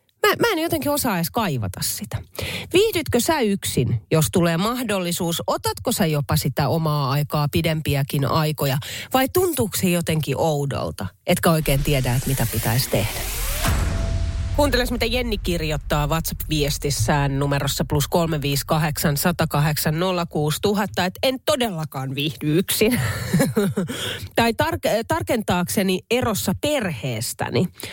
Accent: native